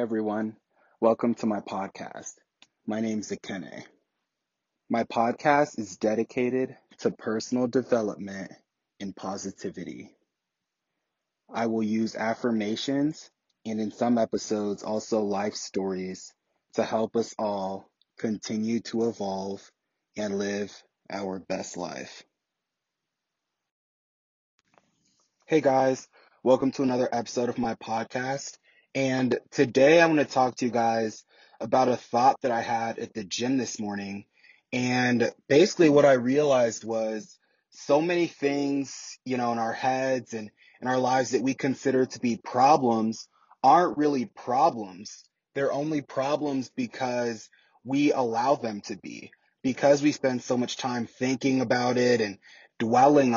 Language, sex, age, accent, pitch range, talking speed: English, male, 20-39, American, 110-130 Hz, 130 wpm